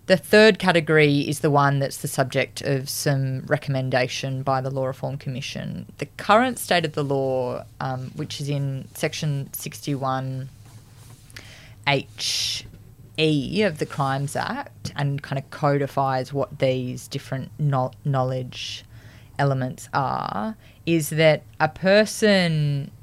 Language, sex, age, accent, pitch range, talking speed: English, female, 20-39, Australian, 125-145 Hz, 125 wpm